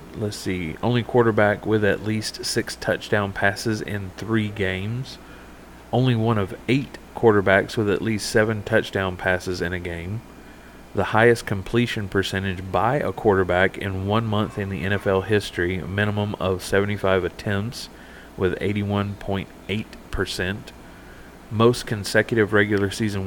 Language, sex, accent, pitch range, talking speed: English, male, American, 95-105 Hz, 130 wpm